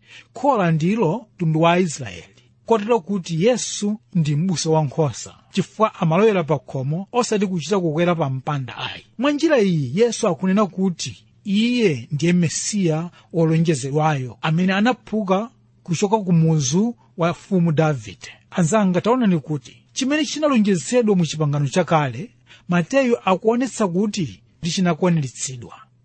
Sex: male